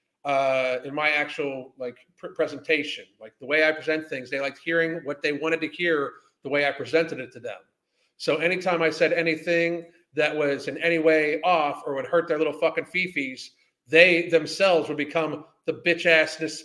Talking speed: 190 wpm